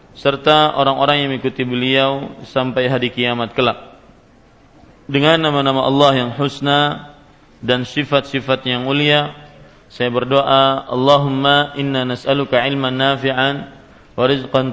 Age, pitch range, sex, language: 40-59, 130-140 Hz, male, Malay